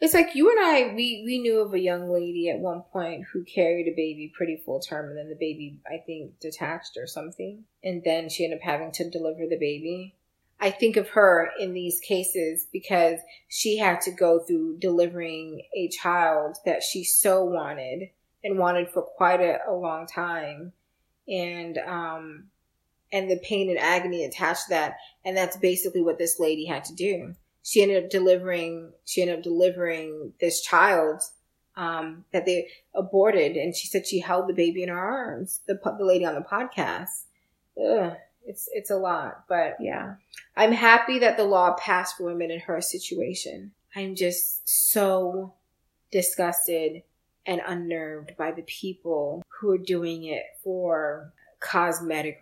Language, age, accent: English, 20-39, American